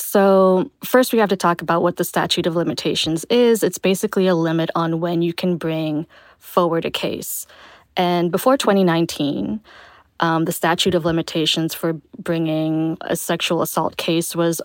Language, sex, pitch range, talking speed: English, female, 165-190 Hz, 165 wpm